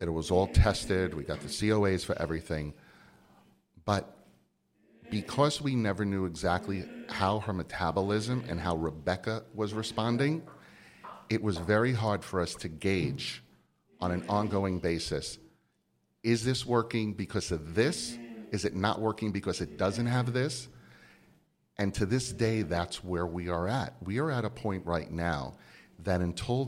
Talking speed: 155 wpm